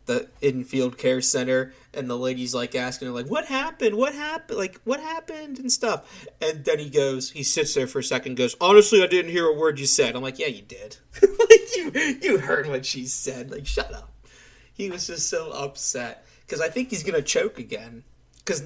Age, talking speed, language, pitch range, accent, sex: 30-49, 220 wpm, English, 125-205 Hz, American, male